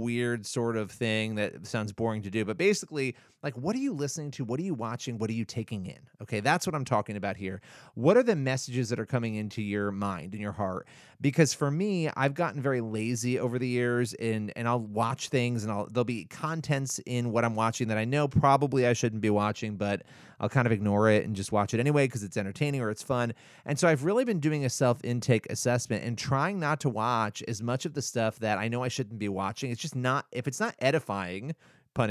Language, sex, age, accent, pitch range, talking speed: English, male, 30-49, American, 110-140 Hz, 240 wpm